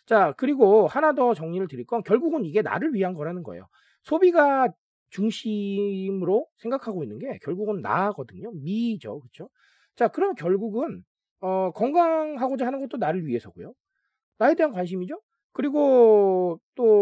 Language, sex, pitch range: Korean, male, 160-255 Hz